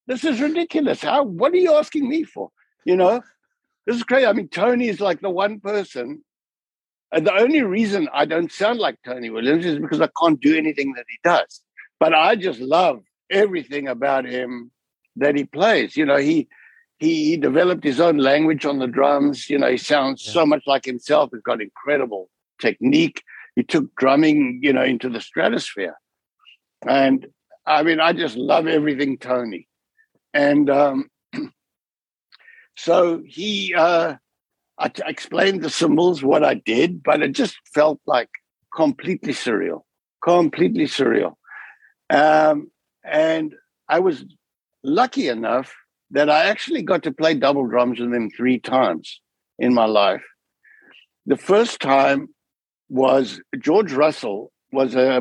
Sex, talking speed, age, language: male, 155 wpm, 60-79, English